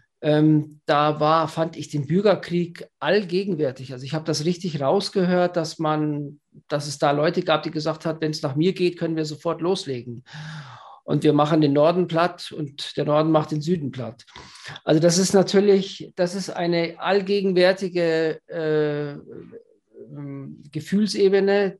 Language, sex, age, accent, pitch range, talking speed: English, male, 50-69, German, 150-180 Hz, 155 wpm